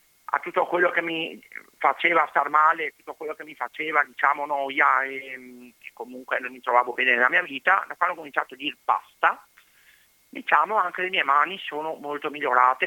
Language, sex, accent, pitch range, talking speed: Italian, male, native, 150-185 Hz, 190 wpm